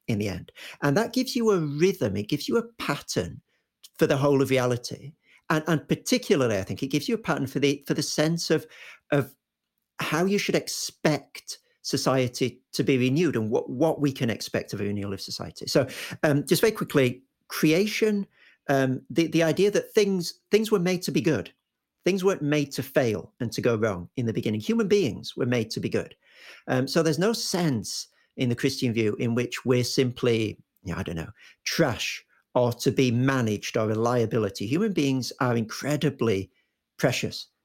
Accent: British